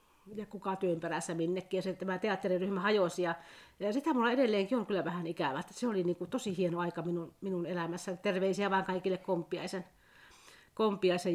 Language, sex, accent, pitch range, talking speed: Finnish, female, native, 175-205 Hz, 160 wpm